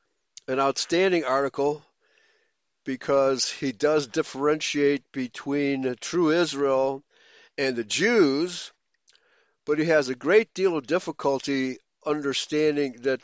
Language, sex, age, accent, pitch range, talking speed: English, male, 60-79, American, 130-160 Hz, 105 wpm